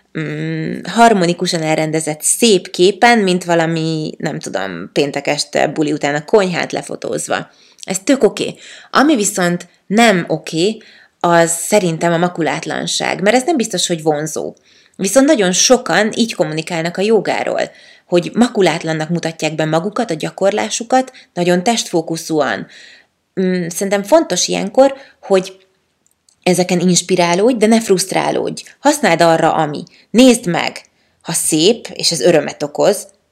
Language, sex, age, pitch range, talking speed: Hungarian, female, 30-49, 165-215 Hz, 120 wpm